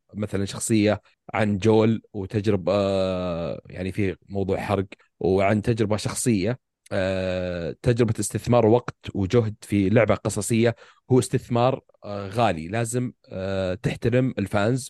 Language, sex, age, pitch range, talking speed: Arabic, male, 30-49, 100-125 Hz, 100 wpm